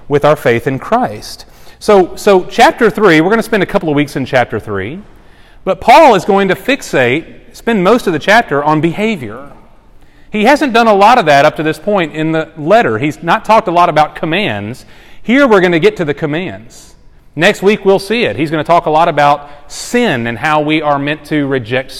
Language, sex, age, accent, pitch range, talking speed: English, male, 30-49, American, 135-205 Hz, 225 wpm